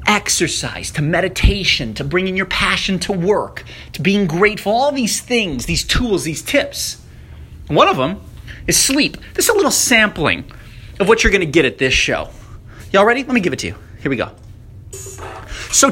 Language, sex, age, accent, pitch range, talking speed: English, male, 30-49, American, 115-195 Hz, 190 wpm